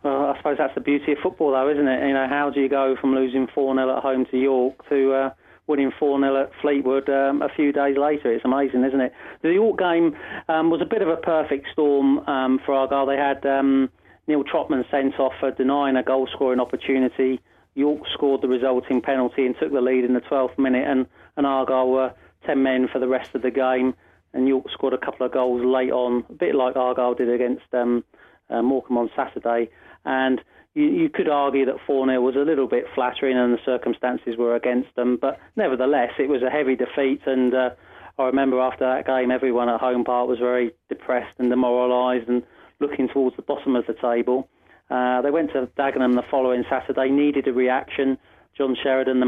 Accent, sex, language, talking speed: British, male, English, 210 wpm